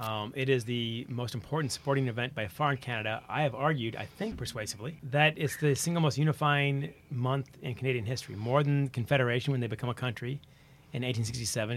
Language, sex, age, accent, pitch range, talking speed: English, male, 30-49, American, 125-150 Hz, 195 wpm